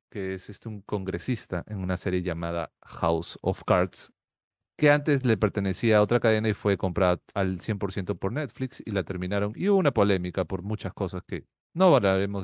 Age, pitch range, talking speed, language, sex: 40-59, 95-120 Hz, 190 wpm, Spanish, male